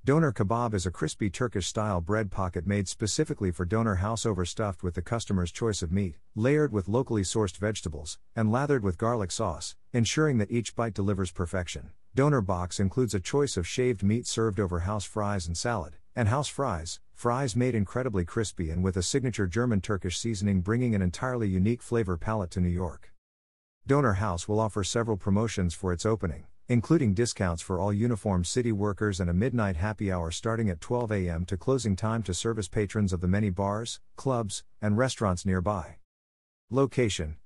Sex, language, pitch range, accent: male, English, 90-115 Hz, American